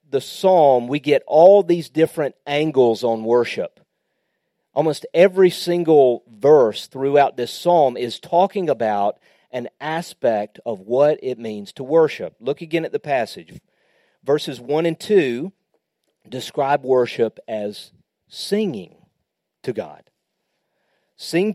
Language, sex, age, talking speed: English, male, 40-59, 125 wpm